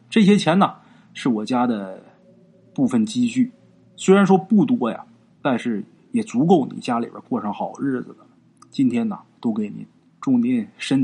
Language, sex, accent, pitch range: Chinese, male, native, 165-245 Hz